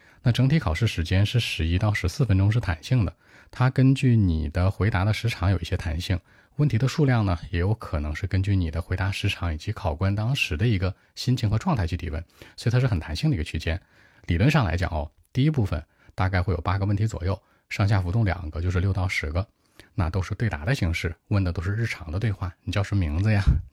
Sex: male